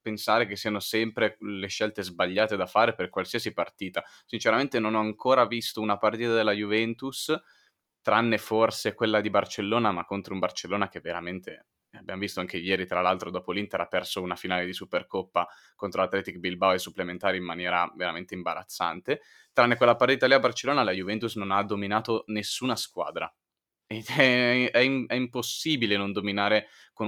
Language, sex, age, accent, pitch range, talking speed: Italian, male, 20-39, native, 100-115 Hz, 170 wpm